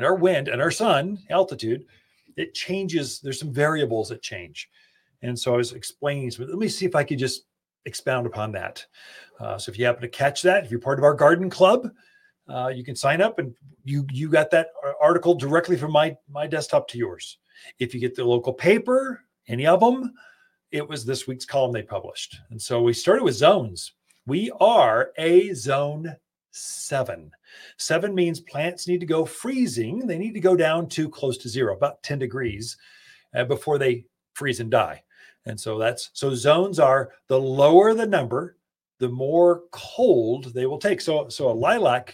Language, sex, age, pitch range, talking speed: English, male, 40-59, 125-180 Hz, 190 wpm